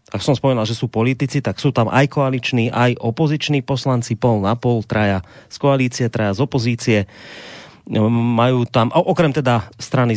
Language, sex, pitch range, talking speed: Slovak, male, 115-130 Hz, 165 wpm